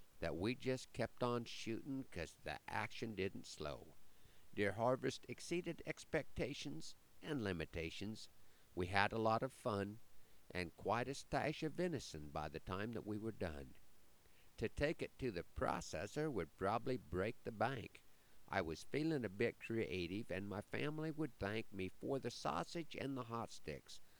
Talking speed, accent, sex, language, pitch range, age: 165 wpm, American, male, English, 90-130 Hz, 50-69